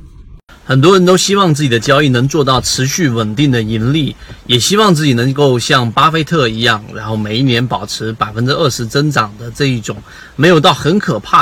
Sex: male